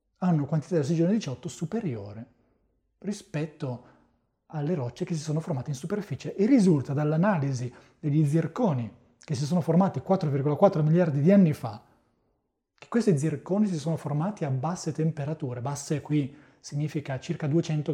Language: Italian